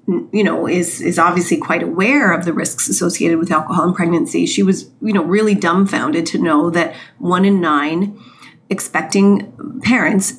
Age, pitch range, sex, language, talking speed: 30-49, 165-210 Hz, female, English, 165 wpm